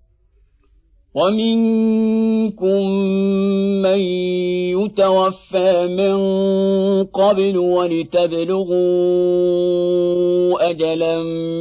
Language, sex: Arabic, male